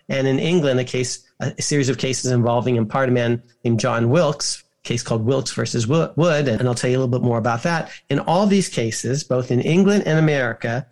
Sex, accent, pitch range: male, American, 125-170 Hz